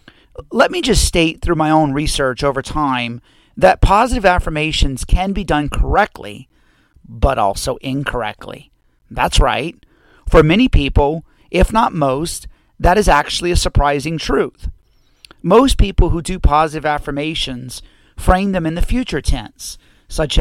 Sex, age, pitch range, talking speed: male, 40-59, 130-175 Hz, 140 wpm